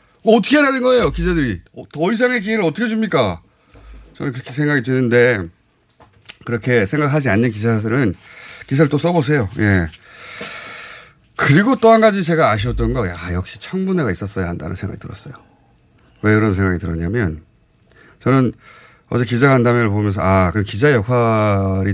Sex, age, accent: male, 30-49, native